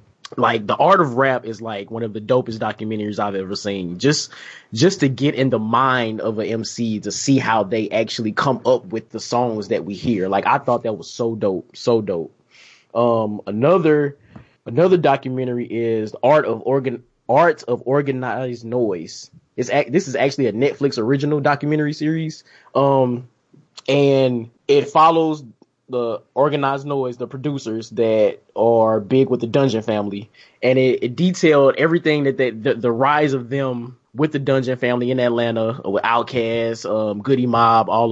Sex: male